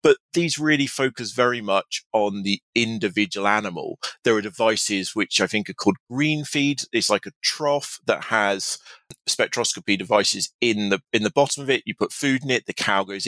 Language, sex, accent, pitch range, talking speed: English, male, British, 95-125 Hz, 195 wpm